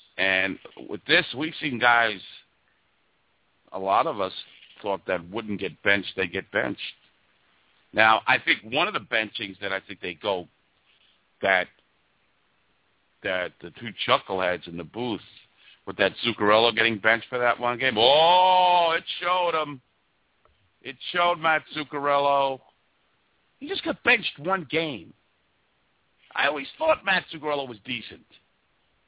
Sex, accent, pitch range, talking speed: male, American, 105-170 Hz, 140 wpm